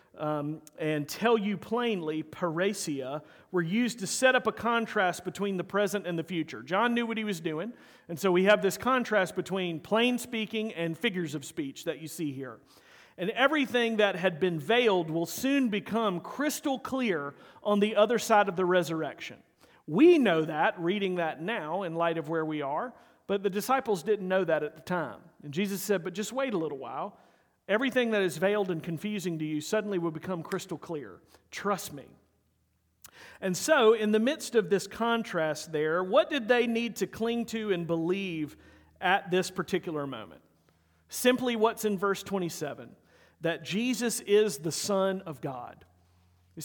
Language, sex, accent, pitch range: English, male, American, 165-230 Hz